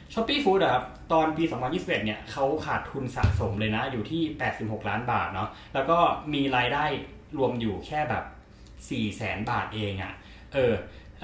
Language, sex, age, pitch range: Thai, male, 20-39, 105-155 Hz